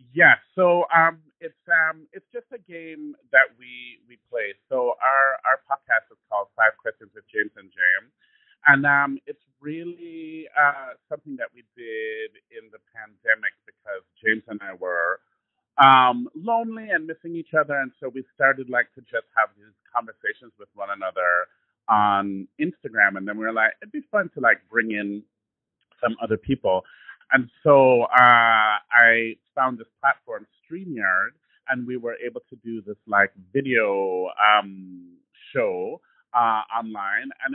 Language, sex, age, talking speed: English, male, 30-49, 160 wpm